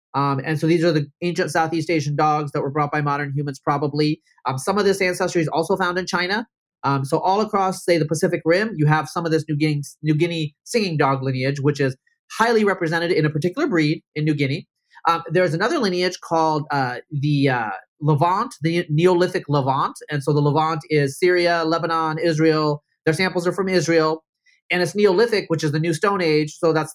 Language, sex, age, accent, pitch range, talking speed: English, male, 30-49, American, 145-180 Hz, 205 wpm